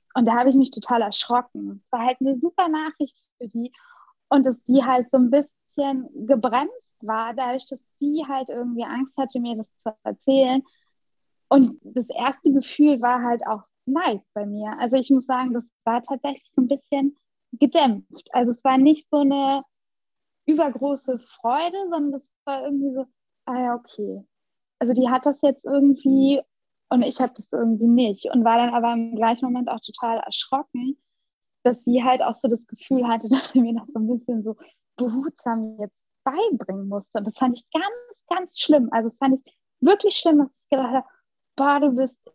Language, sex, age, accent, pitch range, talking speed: German, female, 20-39, German, 240-275 Hz, 190 wpm